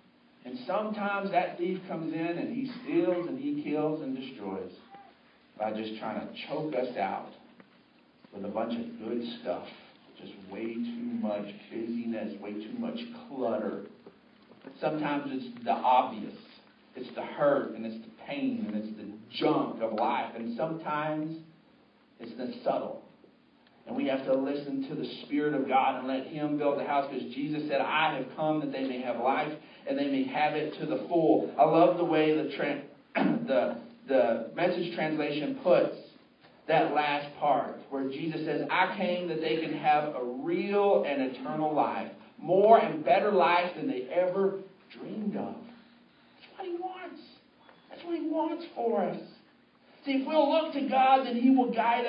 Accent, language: American, English